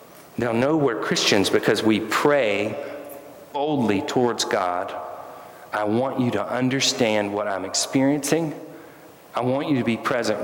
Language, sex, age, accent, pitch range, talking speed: English, male, 40-59, American, 105-135 Hz, 140 wpm